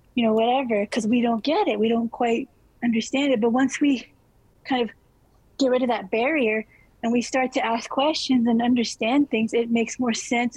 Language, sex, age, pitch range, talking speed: English, female, 30-49, 230-270 Hz, 205 wpm